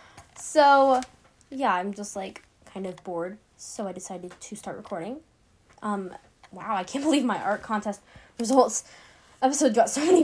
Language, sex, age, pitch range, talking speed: English, female, 10-29, 200-270 Hz, 160 wpm